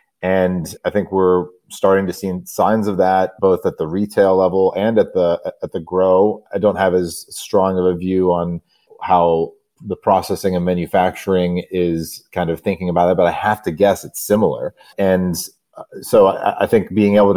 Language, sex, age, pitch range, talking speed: English, male, 30-49, 90-100 Hz, 190 wpm